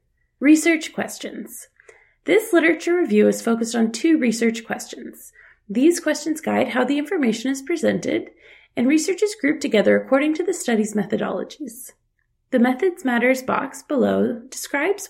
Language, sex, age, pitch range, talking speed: English, female, 30-49, 225-330 Hz, 140 wpm